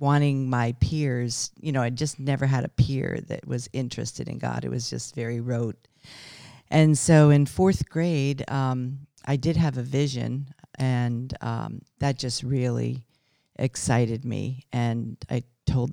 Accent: American